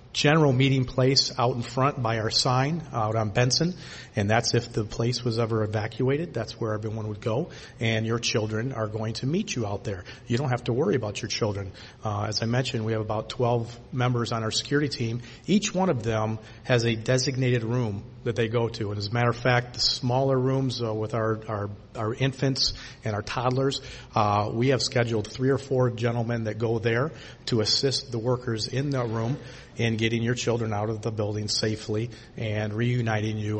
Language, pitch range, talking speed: English, 110-125 Hz, 205 wpm